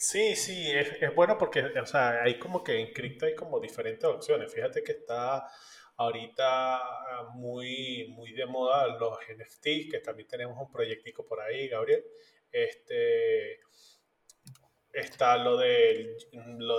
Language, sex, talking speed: Spanish, male, 145 wpm